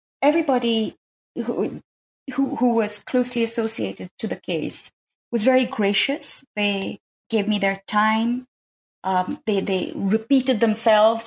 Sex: female